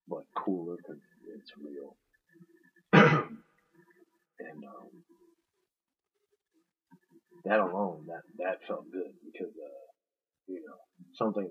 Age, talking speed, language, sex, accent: 30-49, 95 wpm, English, male, American